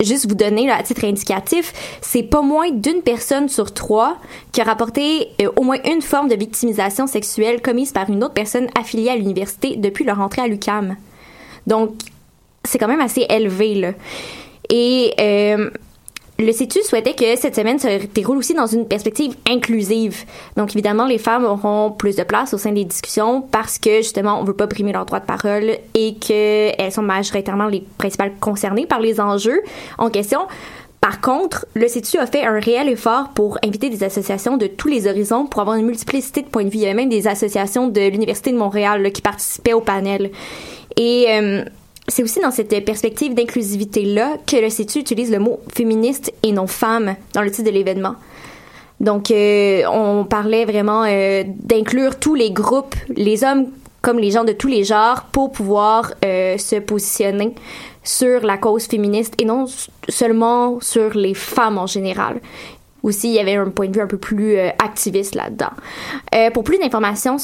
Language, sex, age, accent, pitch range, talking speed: French, female, 20-39, Canadian, 205-245 Hz, 190 wpm